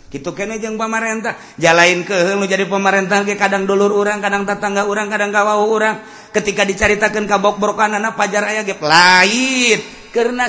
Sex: male